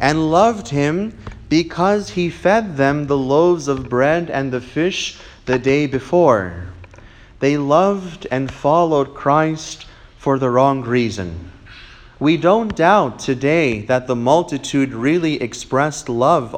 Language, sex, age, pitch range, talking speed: English, male, 30-49, 125-170 Hz, 130 wpm